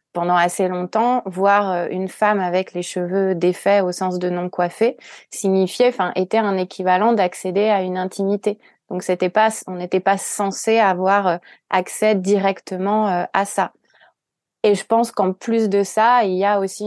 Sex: female